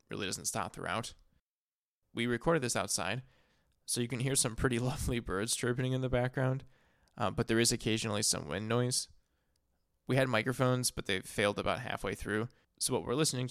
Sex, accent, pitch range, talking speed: male, American, 105-130 Hz, 180 wpm